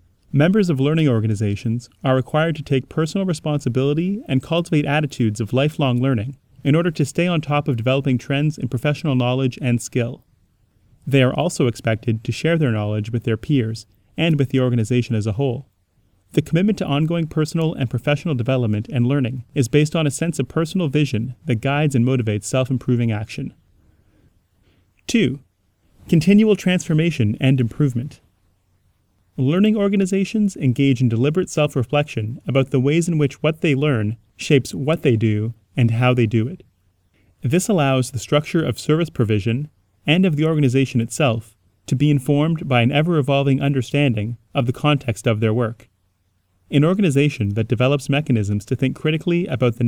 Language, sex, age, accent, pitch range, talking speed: English, male, 30-49, American, 115-150 Hz, 160 wpm